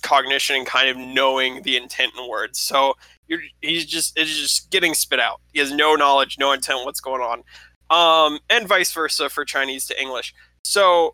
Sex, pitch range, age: male, 125-145 Hz, 20-39